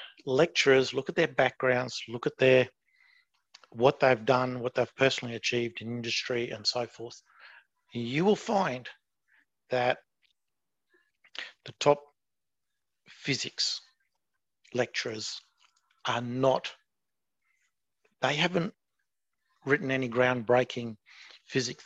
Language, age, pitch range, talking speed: English, 50-69, 120-155 Hz, 100 wpm